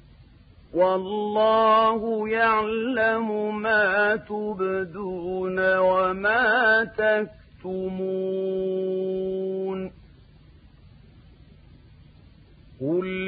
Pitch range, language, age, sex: 170-210 Hz, Arabic, 50-69, male